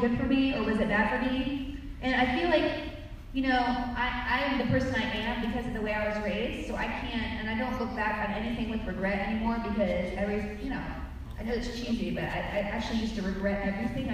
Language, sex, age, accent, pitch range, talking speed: English, female, 30-49, American, 195-235 Hz, 240 wpm